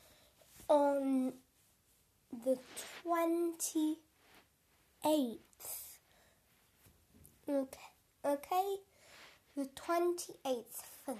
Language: English